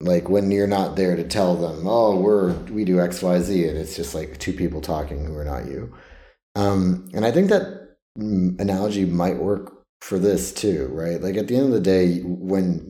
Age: 30-49